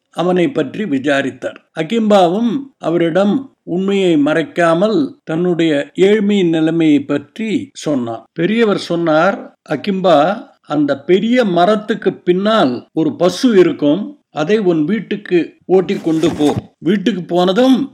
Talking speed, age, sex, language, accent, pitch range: 95 wpm, 60-79, male, Tamil, native, 165-230 Hz